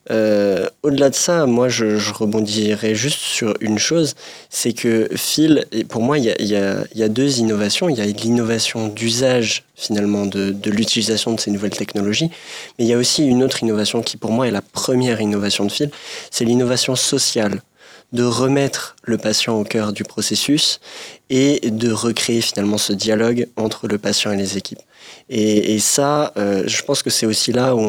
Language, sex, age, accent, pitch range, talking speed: French, male, 20-39, French, 105-125 Hz, 195 wpm